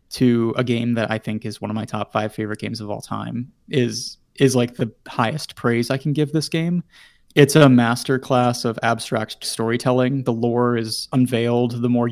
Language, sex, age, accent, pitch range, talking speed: English, male, 20-39, American, 115-130 Hz, 200 wpm